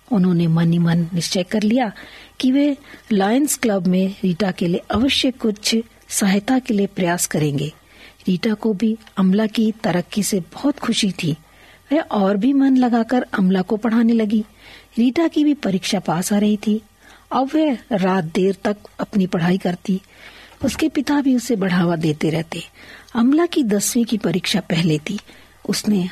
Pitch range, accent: 190-245 Hz, native